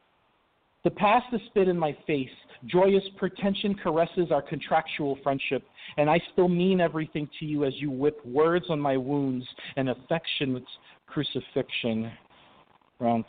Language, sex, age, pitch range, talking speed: English, male, 40-59, 130-180 Hz, 140 wpm